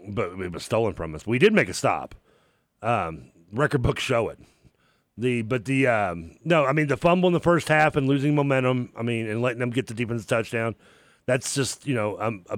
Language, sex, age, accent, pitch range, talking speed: English, male, 40-59, American, 105-135 Hz, 225 wpm